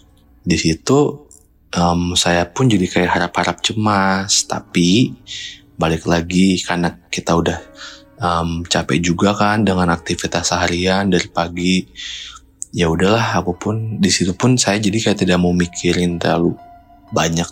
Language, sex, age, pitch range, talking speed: Indonesian, male, 20-39, 85-110 Hz, 135 wpm